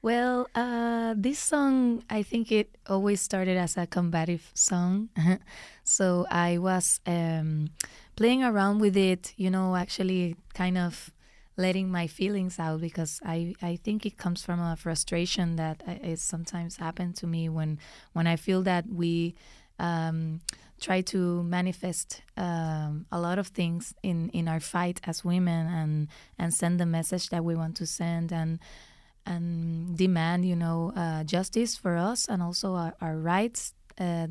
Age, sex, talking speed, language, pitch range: 20-39, female, 160 wpm, English, 170-190 Hz